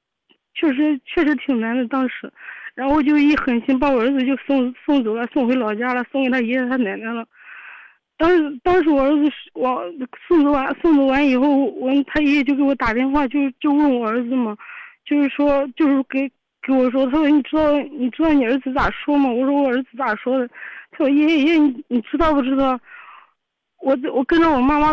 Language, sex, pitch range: Chinese, female, 260-310 Hz